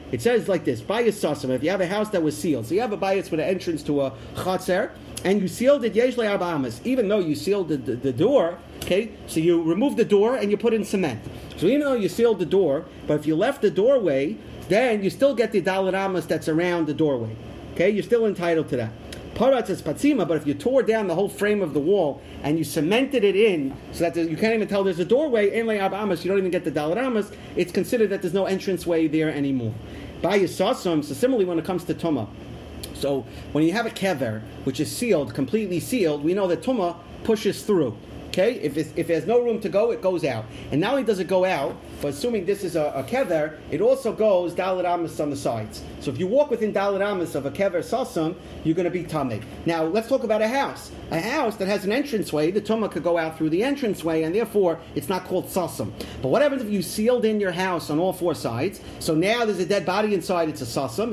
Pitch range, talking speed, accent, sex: 160-220 Hz, 235 wpm, American, male